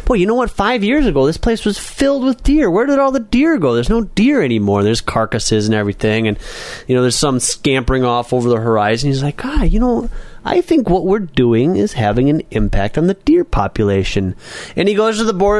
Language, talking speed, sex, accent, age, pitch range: English, 235 wpm, male, American, 30-49, 125-195 Hz